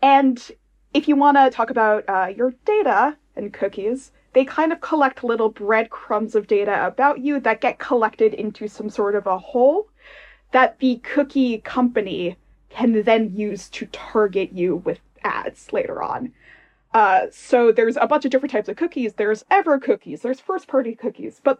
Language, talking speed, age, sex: English, 175 wpm, 20-39, female